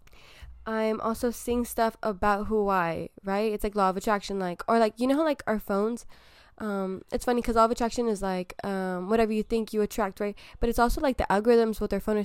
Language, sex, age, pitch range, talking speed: English, female, 10-29, 205-235 Hz, 225 wpm